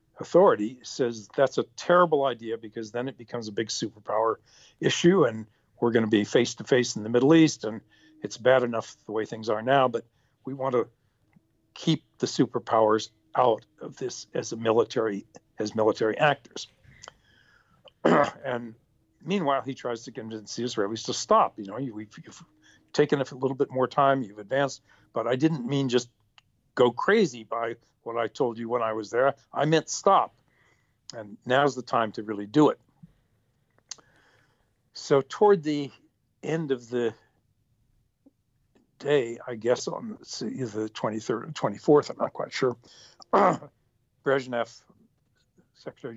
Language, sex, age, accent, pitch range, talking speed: English, male, 60-79, American, 115-140 Hz, 155 wpm